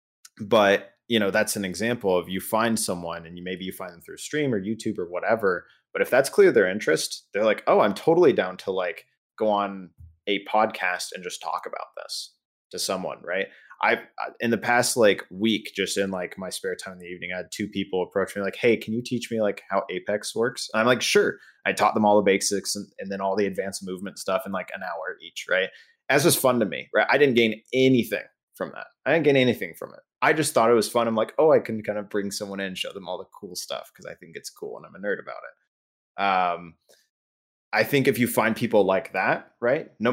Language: English